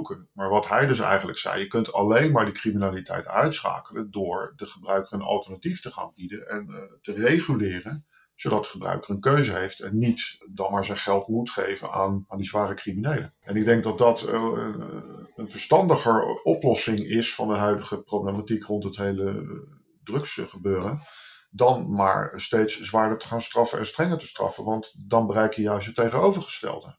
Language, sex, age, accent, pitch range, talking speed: Dutch, male, 50-69, Dutch, 100-115 Hz, 180 wpm